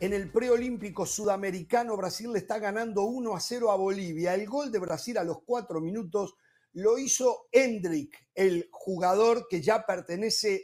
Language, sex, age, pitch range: Spanish, male, 50-69, 165-220 Hz